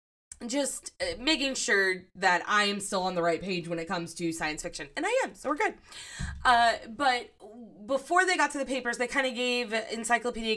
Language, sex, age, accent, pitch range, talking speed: English, female, 20-39, American, 175-245 Hz, 205 wpm